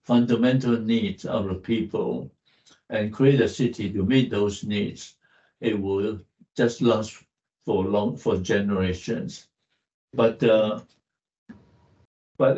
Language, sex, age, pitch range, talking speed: English, male, 60-79, 105-130 Hz, 115 wpm